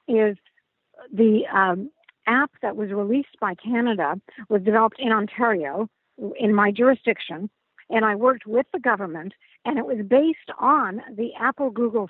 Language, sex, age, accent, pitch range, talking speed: English, female, 50-69, American, 215-270 Hz, 150 wpm